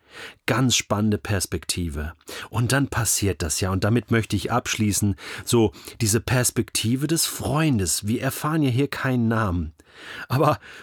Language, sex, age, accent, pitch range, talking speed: German, male, 40-59, German, 105-150 Hz, 140 wpm